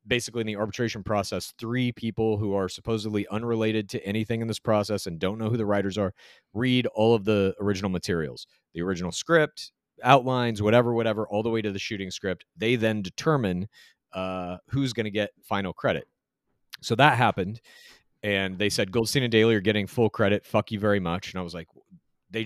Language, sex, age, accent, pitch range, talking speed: English, male, 30-49, American, 100-125 Hz, 200 wpm